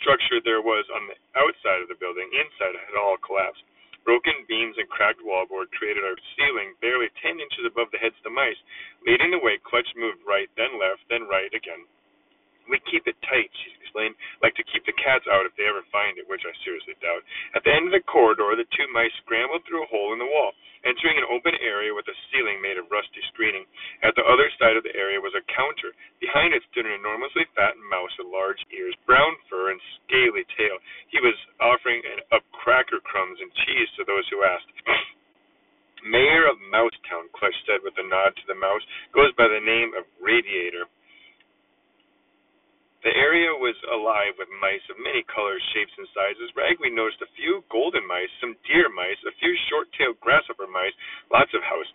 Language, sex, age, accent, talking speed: English, male, 30-49, American, 200 wpm